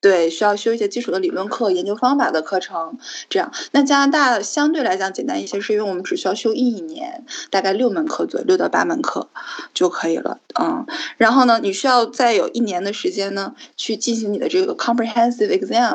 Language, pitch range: Chinese, 205-330 Hz